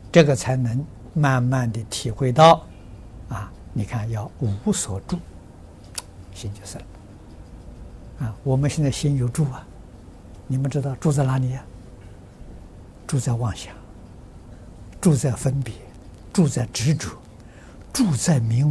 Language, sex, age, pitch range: Chinese, male, 60-79, 95-140 Hz